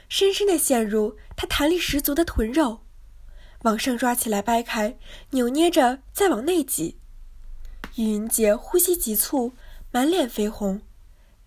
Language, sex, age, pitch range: Chinese, female, 20-39, 215-320 Hz